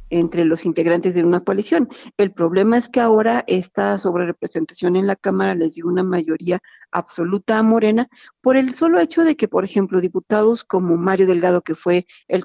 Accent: Mexican